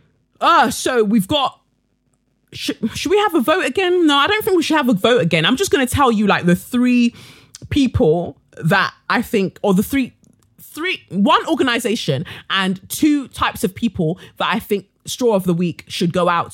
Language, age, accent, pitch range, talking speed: English, 20-39, British, 175-245 Hz, 195 wpm